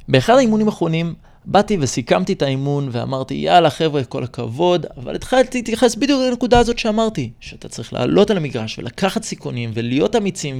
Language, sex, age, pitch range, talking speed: Hebrew, male, 30-49, 130-195 Hz, 160 wpm